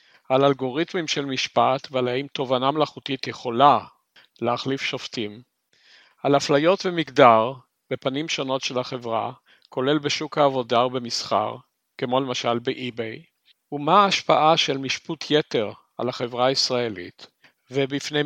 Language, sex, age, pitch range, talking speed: Hebrew, male, 50-69, 130-165 Hz, 110 wpm